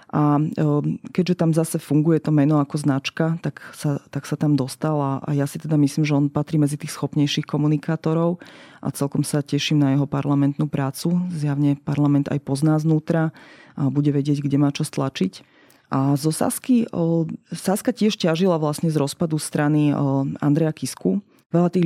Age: 30-49